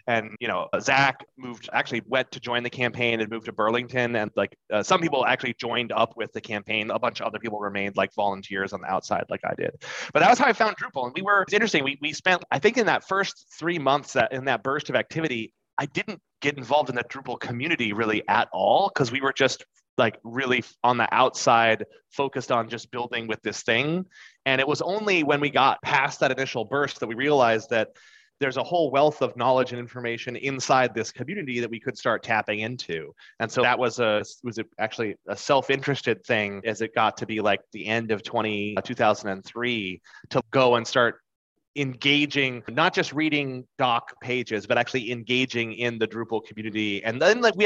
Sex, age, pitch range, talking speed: male, 30-49, 110-140 Hz, 215 wpm